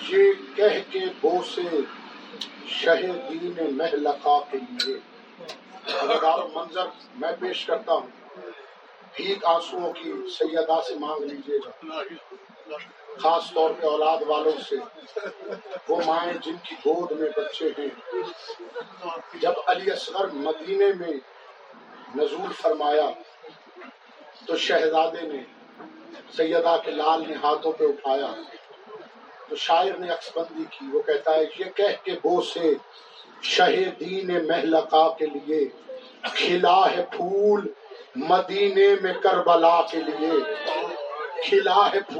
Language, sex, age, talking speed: Urdu, male, 50-69, 65 wpm